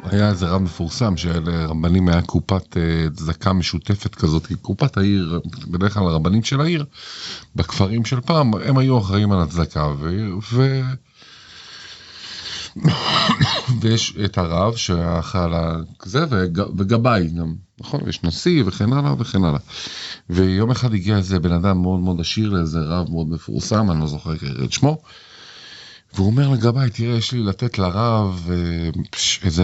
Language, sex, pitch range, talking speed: Hebrew, male, 85-115 Hz, 140 wpm